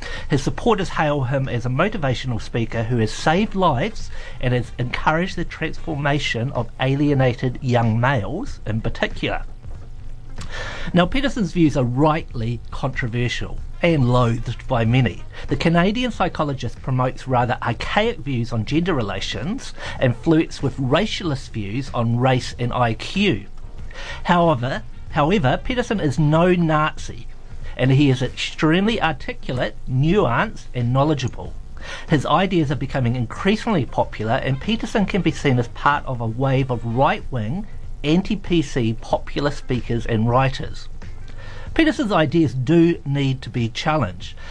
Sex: male